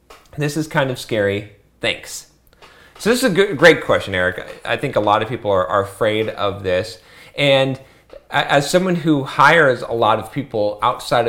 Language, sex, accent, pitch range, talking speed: English, male, American, 110-140 Hz, 185 wpm